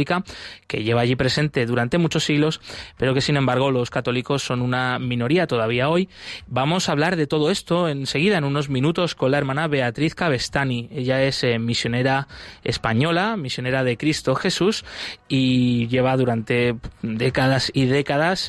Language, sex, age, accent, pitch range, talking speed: Spanish, male, 20-39, Spanish, 125-150 Hz, 155 wpm